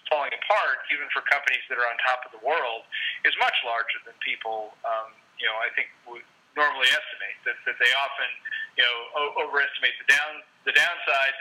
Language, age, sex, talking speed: English, 40-59, male, 195 wpm